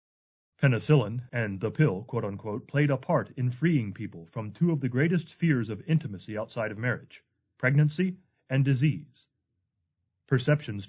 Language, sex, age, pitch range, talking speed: English, male, 30-49, 110-150 Hz, 145 wpm